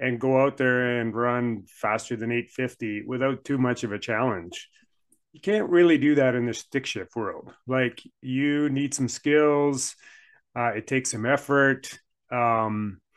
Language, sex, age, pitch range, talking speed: English, male, 30-49, 115-140 Hz, 165 wpm